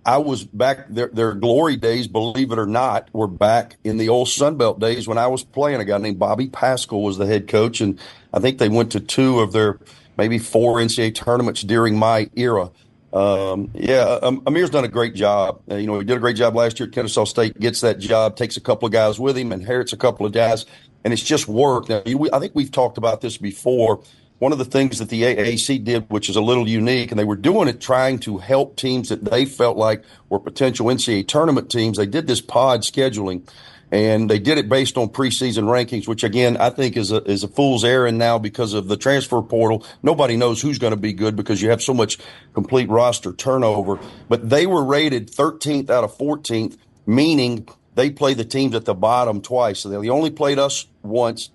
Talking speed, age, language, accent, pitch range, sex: 225 wpm, 40-59, English, American, 110-130 Hz, male